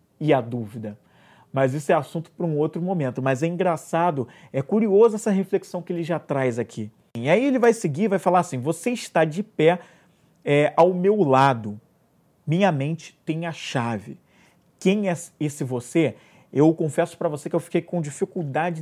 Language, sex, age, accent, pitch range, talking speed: Portuguese, male, 40-59, Brazilian, 145-180 Hz, 180 wpm